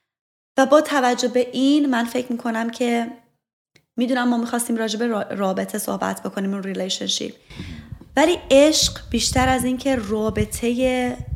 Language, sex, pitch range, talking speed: Persian, female, 210-255 Hz, 120 wpm